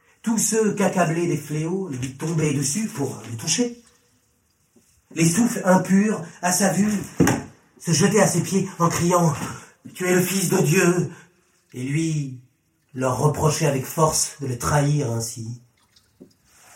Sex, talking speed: male, 145 wpm